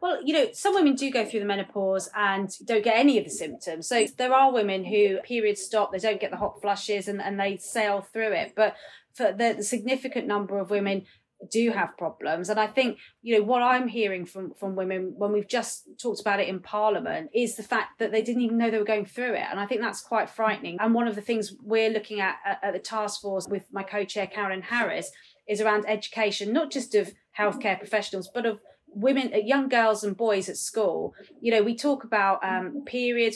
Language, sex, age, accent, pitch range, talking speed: English, female, 30-49, British, 200-235 Hz, 230 wpm